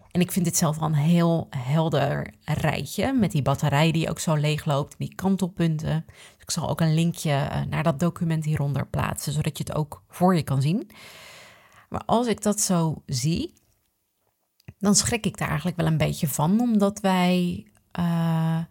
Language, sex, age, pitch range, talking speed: Dutch, female, 30-49, 155-190 Hz, 185 wpm